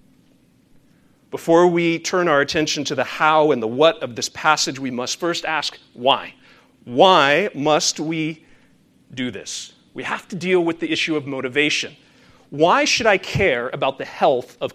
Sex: male